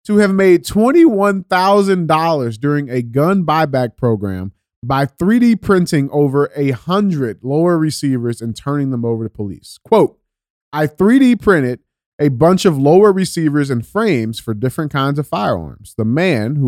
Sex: male